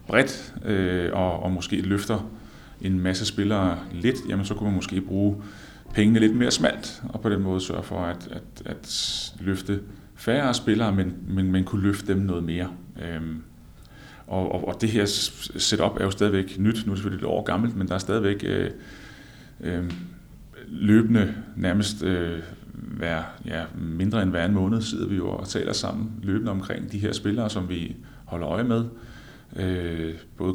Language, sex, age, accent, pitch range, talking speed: Danish, male, 30-49, native, 90-110 Hz, 170 wpm